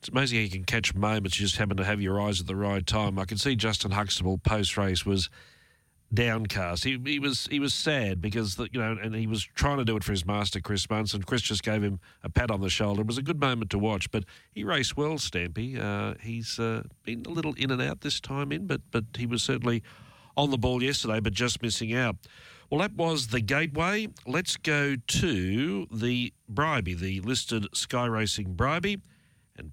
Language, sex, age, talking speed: English, male, 40-59, 220 wpm